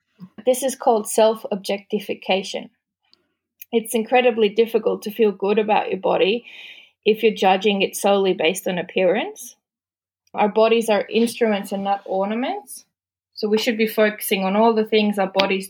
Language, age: English, 20-39